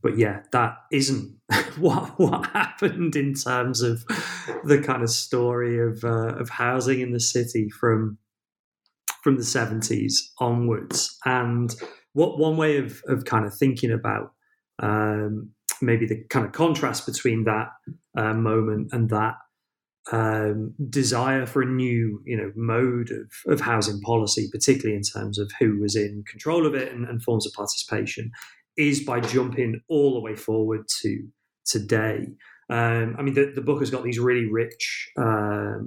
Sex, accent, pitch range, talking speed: male, British, 110-130 Hz, 160 wpm